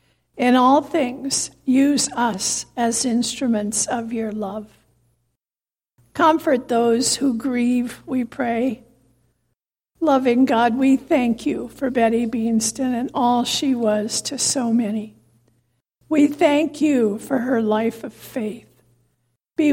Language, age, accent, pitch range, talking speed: English, 60-79, American, 220-265 Hz, 120 wpm